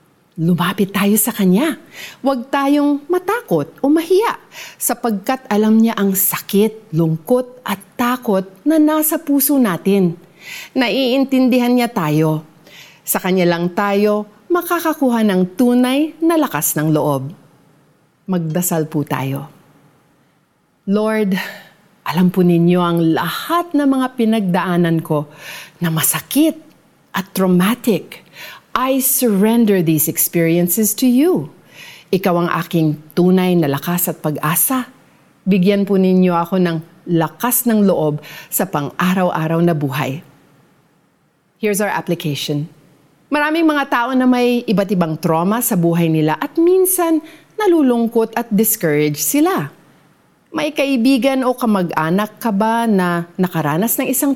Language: Filipino